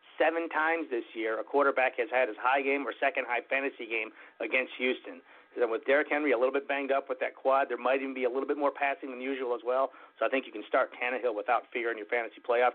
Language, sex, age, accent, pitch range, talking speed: English, male, 40-59, American, 130-165 Hz, 270 wpm